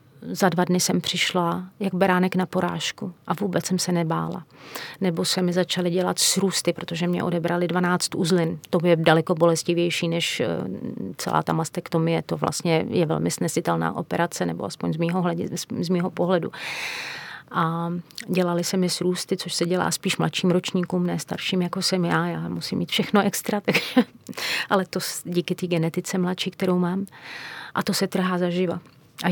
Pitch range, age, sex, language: 170-185 Hz, 30-49, female, Czech